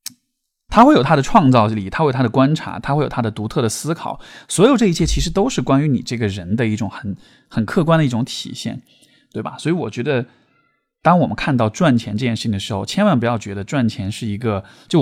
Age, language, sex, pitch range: 20-39, Chinese, male, 110-150 Hz